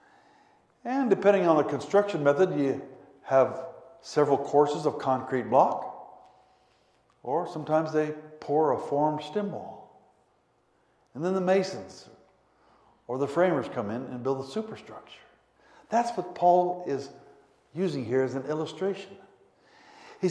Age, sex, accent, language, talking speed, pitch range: 60-79, male, American, English, 130 wpm, 155-215 Hz